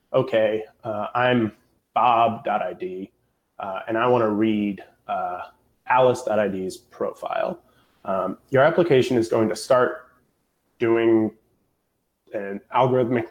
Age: 20-39